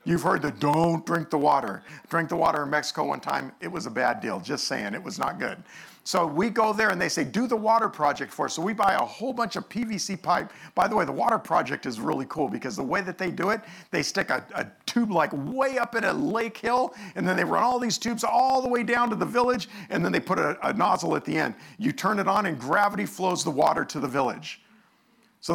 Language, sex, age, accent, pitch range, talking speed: English, male, 50-69, American, 155-230 Hz, 265 wpm